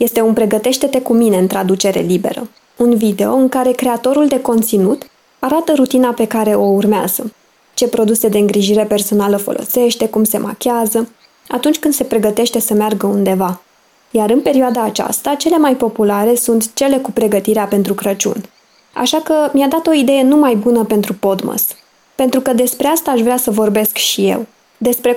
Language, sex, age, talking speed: Romanian, female, 20-39, 170 wpm